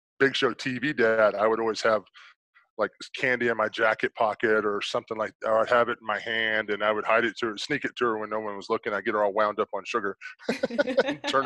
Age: 20-39